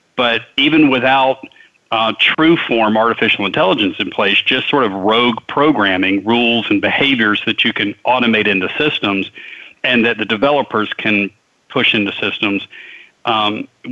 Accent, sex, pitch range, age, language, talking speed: American, male, 105-130 Hz, 40-59, English, 140 wpm